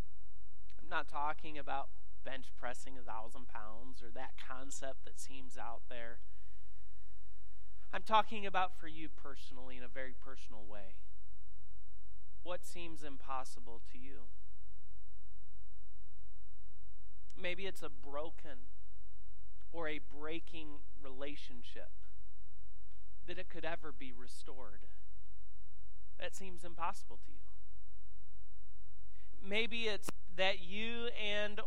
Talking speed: 105 wpm